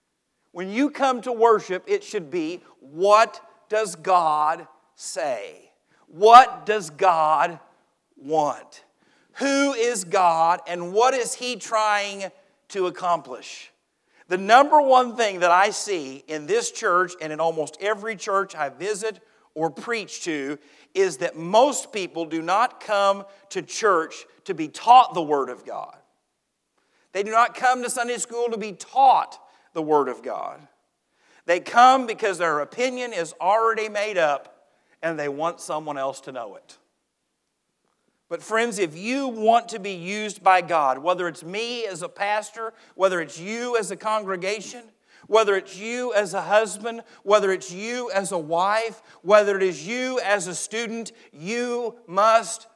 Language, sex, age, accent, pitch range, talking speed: English, male, 50-69, American, 175-230 Hz, 155 wpm